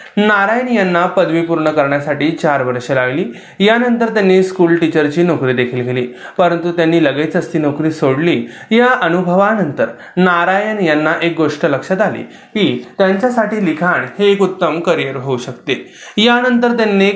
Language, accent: Marathi, native